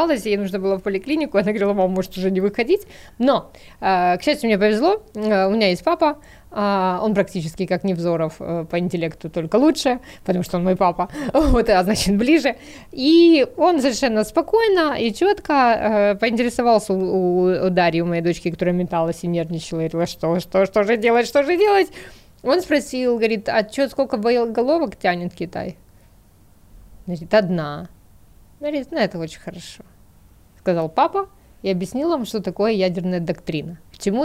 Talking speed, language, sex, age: 145 wpm, Russian, female, 20-39